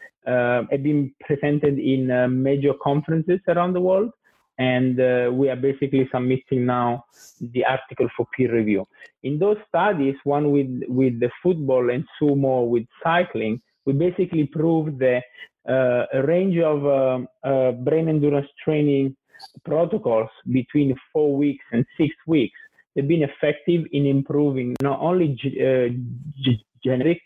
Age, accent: 30-49, Italian